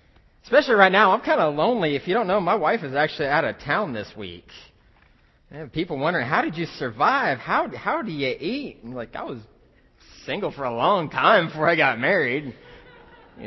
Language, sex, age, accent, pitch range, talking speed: English, male, 20-39, American, 115-160 Hz, 205 wpm